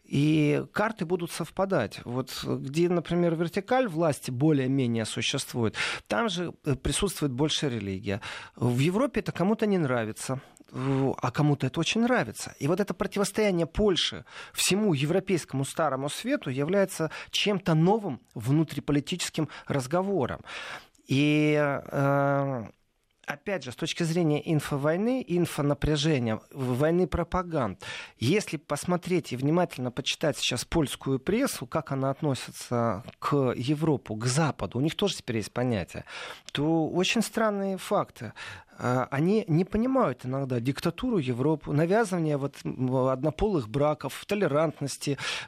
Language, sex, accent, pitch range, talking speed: Russian, male, native, 135-180 Hz, 115 wpm